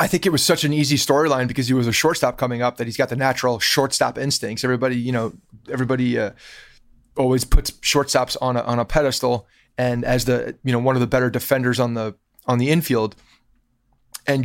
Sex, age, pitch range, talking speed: male, 30-49, 120-140 Hz, 210 wpm